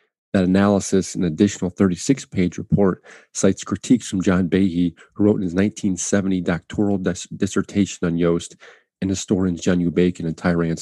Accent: American